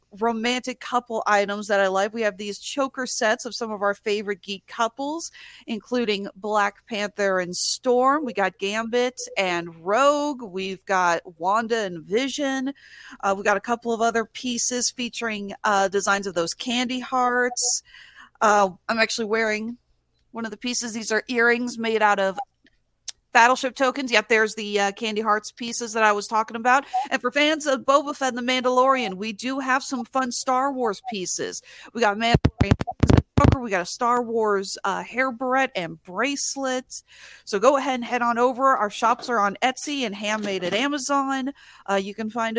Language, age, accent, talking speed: English, 40-59, American, 180 wpm